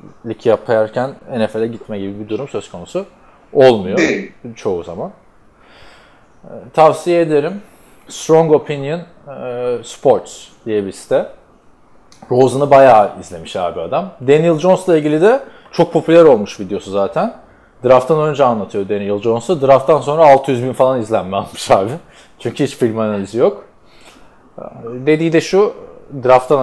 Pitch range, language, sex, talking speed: 120-170 Hz, Turkish, male, 120 wpm